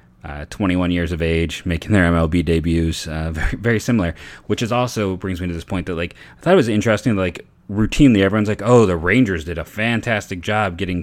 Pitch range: 85-110 Hz